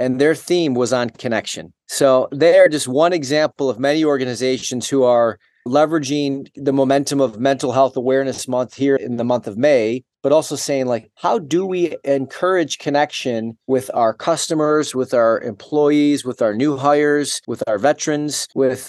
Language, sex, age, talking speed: English, male, 30-49, 170 wpm